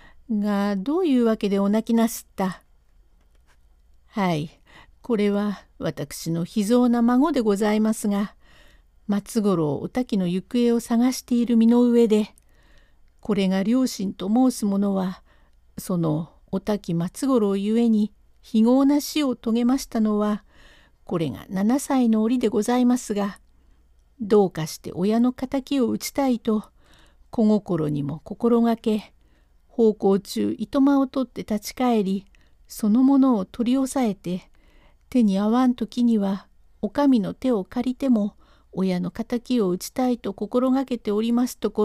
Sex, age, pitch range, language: female, 50-69, 190-240 Hz, Japanese